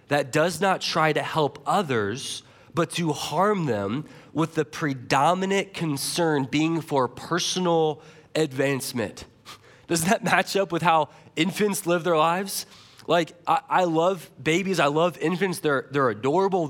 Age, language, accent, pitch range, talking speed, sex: 20-39, English, American, 145-185 Hz, 145 wpm, male